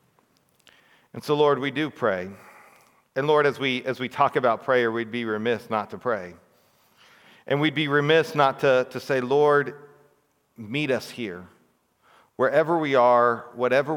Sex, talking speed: male, 160 wpm